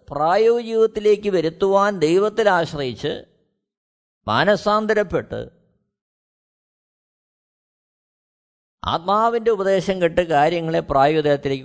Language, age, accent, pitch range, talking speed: Malayalam, 50-69, native, 140-215 Hz, 55 wpm